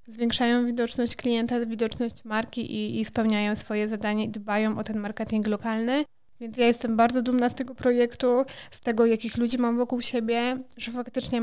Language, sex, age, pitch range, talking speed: Polish, female, 20-39, 225-240 Hz, 175 wpm